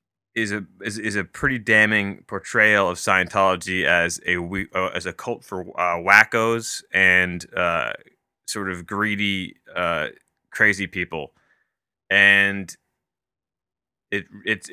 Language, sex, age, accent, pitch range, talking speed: English, male, 20-39, American, 95-115 Hz, 120 wpm